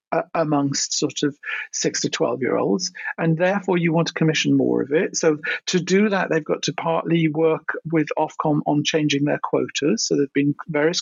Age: 50-69